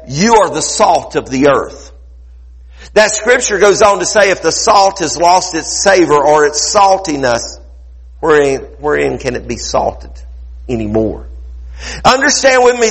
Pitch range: 135-205 Hz